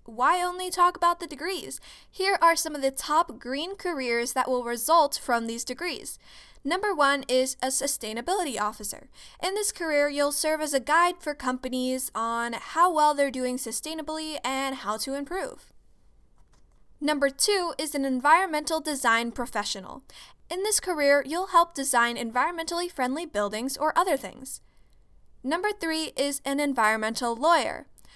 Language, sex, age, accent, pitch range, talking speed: English, female, 10-29, American, 250-325 Hz, 150 wpm